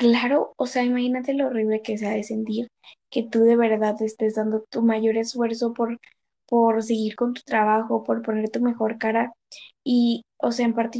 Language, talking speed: Spanish, 190 wpm